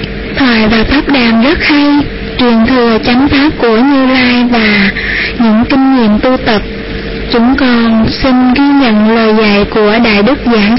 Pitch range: 230-275 Hz